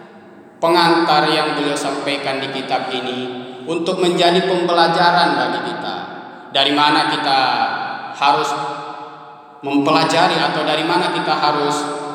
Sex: male